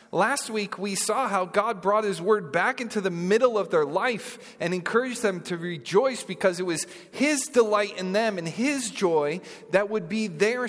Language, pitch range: English, 160-215 Hz